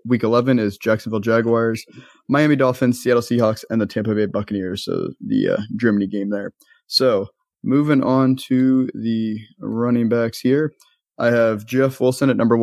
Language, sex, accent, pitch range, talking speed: English, male, American, 115-135 Hz, 160 wpm